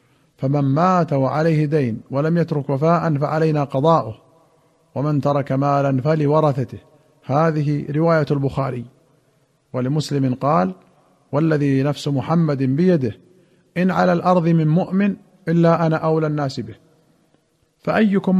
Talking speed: 110 wpm